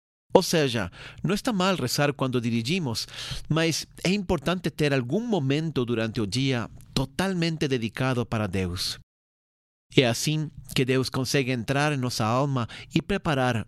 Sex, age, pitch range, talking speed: male, 40-59, 125-155 Hz, 140 wpm